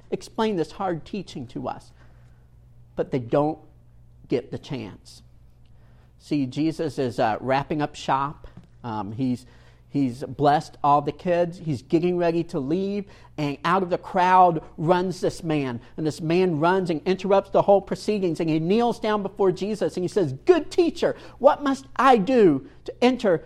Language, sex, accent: English, male, American